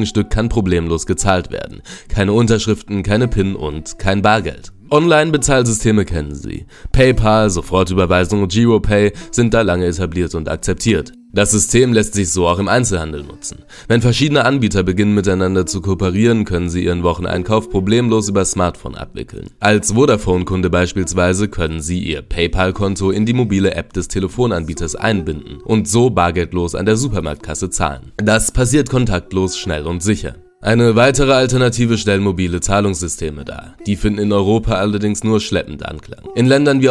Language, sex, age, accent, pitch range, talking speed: German, male, 20-39, German, 90-115 Hz, 155 wpm